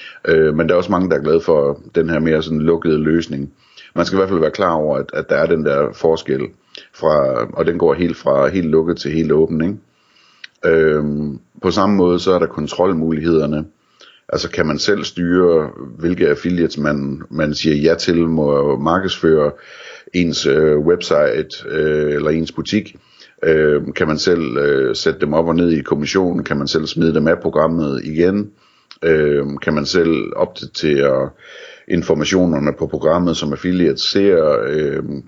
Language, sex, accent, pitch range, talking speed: Danish, male, native, 75-85 Hz, 165 wpm